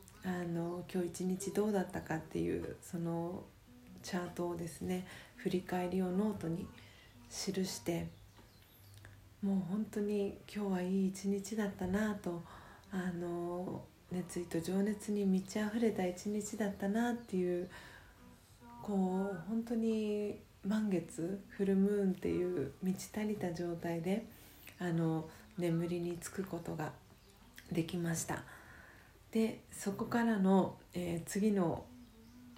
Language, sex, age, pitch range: Japanese, female, 40-59, 165-195 Hz